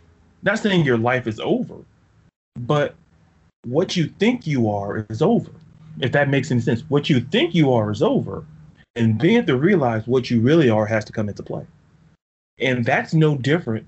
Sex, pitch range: male, 115-160 Hz